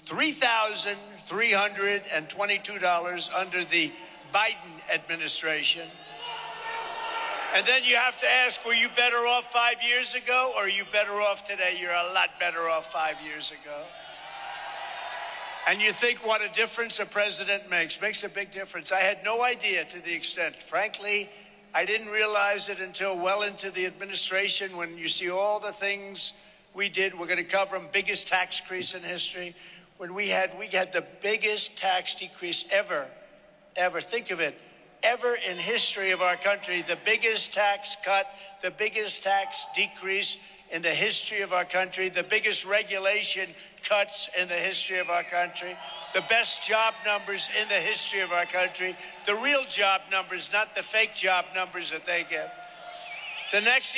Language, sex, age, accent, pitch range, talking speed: English, male, 60-79, American, 180-215 Hz, 165 wpm